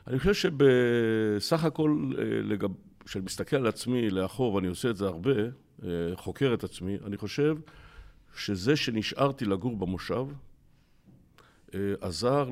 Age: 60-79